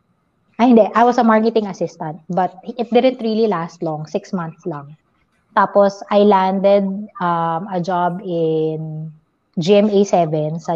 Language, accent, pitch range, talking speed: English, Filipino, 170-215 Hz, 135 wpm